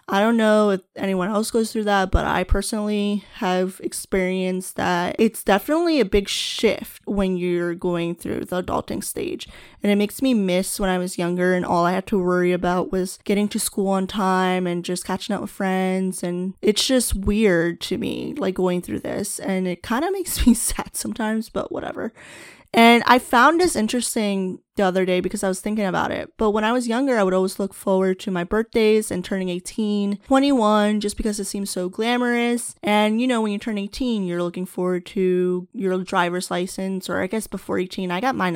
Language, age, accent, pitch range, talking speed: English, 10-29, American, 185-215 Hz, 210 wpm